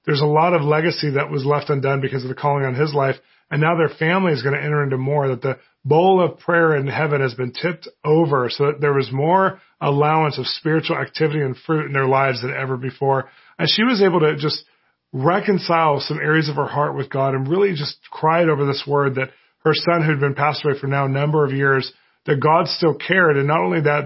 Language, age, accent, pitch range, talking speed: English, 30-49, American, 140-165 Hz, 240 wpm